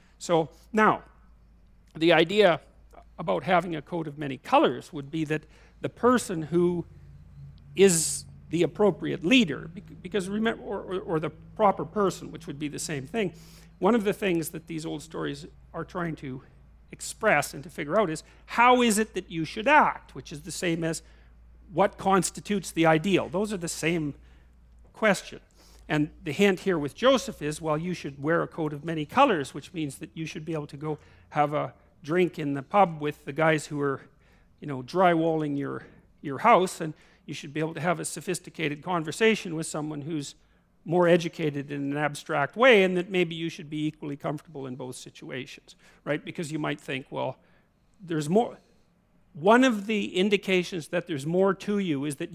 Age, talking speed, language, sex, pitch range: 50-69, 185 wpm, English, male, 150-185 Hz